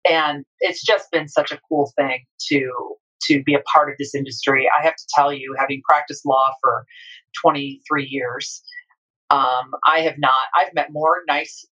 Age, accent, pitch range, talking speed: 40-59, American, 140-165 Hz, 180 wpm